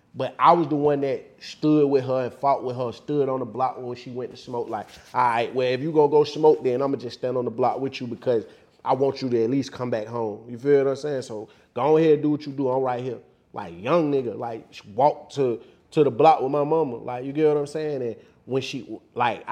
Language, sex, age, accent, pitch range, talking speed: English, male, 30-49, American, 120-145 Hz, 275 wpm